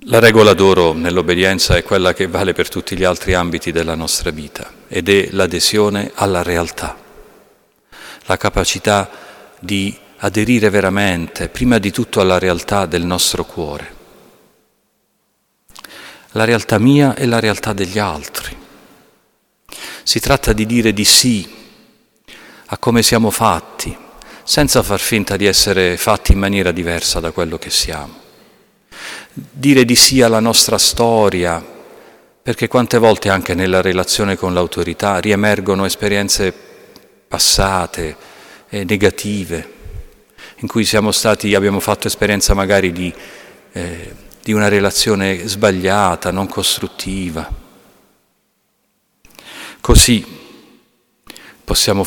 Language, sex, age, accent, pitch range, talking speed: Italian, male, 40-59, native, 95-110 Hz, 120 wpm